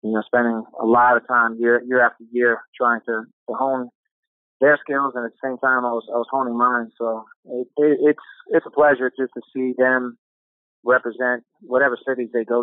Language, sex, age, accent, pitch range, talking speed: English, male, 30-49, American, 115-125 Hz, 210 wpm